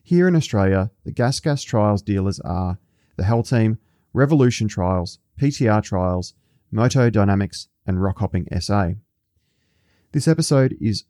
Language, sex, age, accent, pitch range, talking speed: English, male, 30-49, Australian, 100-125 Hz, 135 wpm